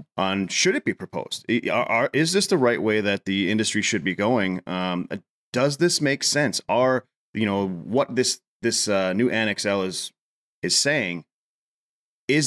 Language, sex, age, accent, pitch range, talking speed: English, male, 30-49, American, 95-125 Hz, 180 wpm